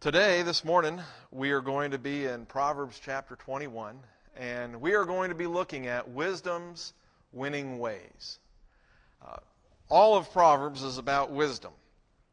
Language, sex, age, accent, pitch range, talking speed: English, male, 50-69, American, 130-165 Hz, 145 wpm